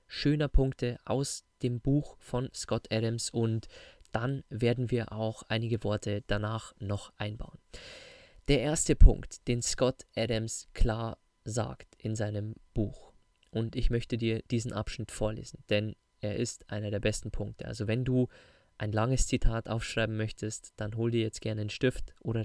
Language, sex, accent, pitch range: German, male, German, 110-130 Hz